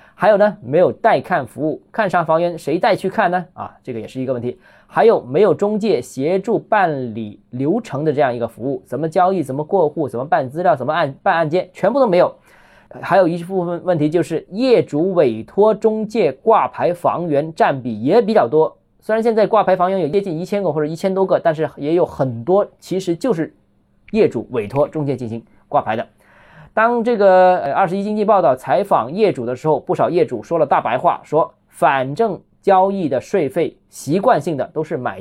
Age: 20-39